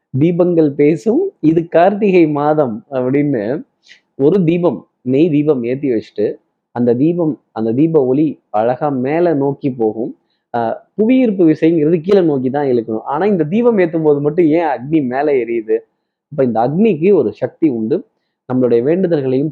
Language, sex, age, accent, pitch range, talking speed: Tamil, male, 20-39, native, 130-175 Hz, 140 wpm